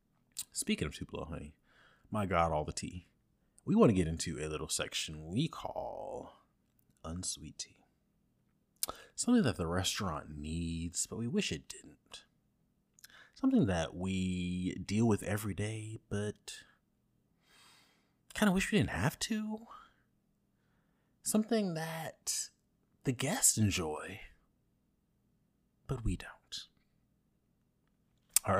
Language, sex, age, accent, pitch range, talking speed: English, male, 30-49, American, 85-130 Hz, 115 wpm